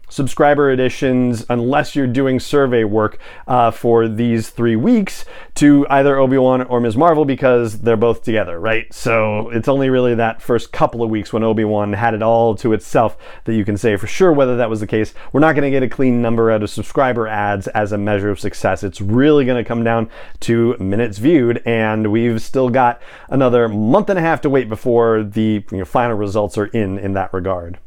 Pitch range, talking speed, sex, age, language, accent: 110-150 Hz, 210 wpm, male, 30-49, English, American